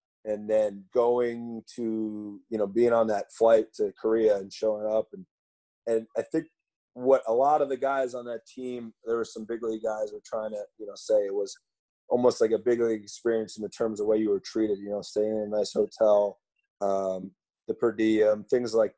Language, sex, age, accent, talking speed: English, male, 30-49, American, 220 wpm